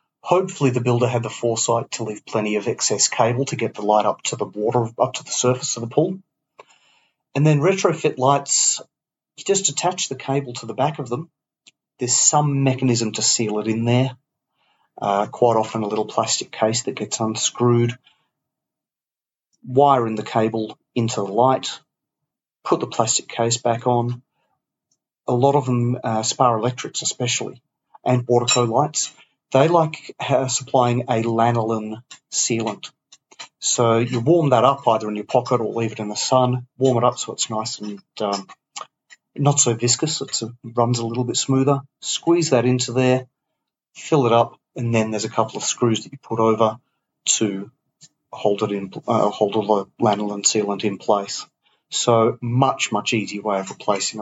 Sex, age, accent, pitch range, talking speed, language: male, 30-49, Australian, 110-135 Hz, 175 wpm, English